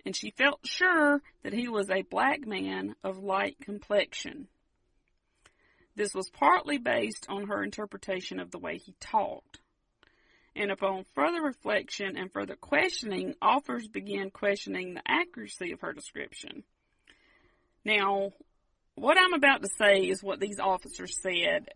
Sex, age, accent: female, 40-59, American